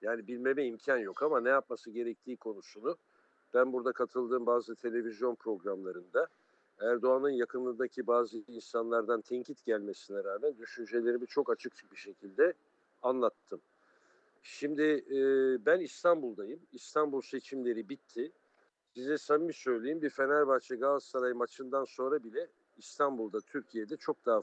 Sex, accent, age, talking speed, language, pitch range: male, Turkish, 60-79, 115 wpm, German, 120-170 Hz